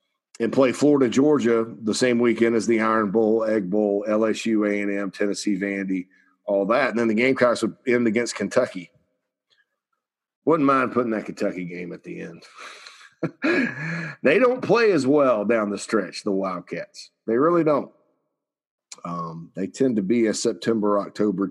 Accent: American